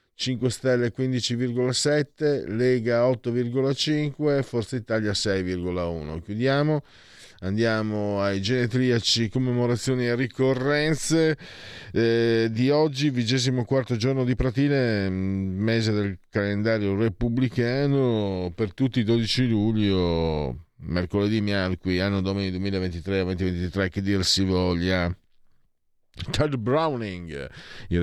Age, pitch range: 40-59, 90-130 Hz